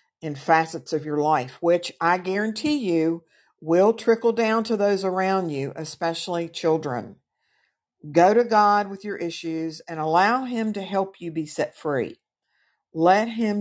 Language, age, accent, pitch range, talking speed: English, 50-69, American, 160-220 Hz, 155 wpm